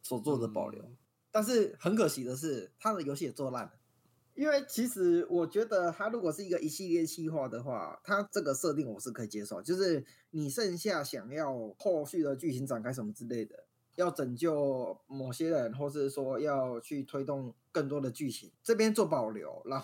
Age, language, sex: 20-39, Chinese, male